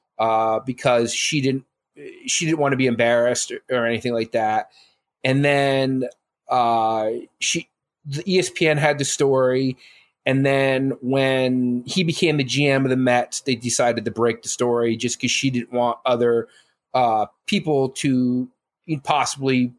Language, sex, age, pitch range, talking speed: English, male, 30-49, 125-175 Hz, 150 wpm